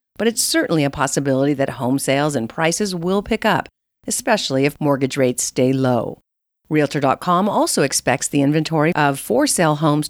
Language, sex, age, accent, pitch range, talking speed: English, female, 40-59, American, 135-210 Hz, 160 wpm